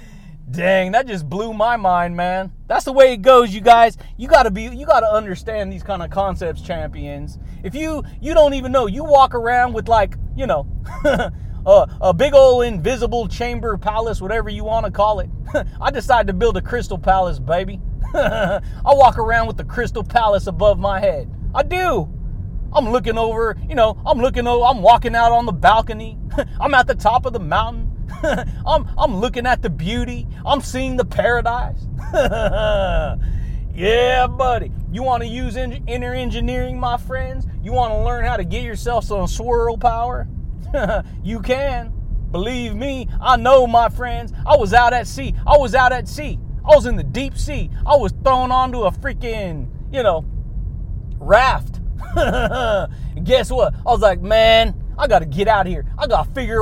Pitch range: 190-255 Hz